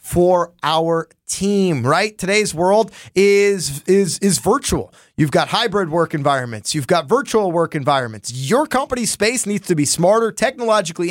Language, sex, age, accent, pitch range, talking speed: English, male, 30-49, American, 155-200 Hz, 145 wpm